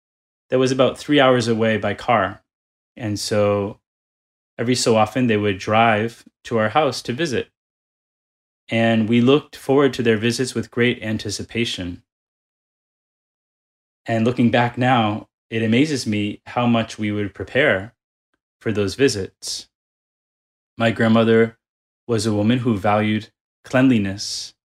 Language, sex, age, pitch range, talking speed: English, male, 10-29, 100-120 Hz, 130 wpm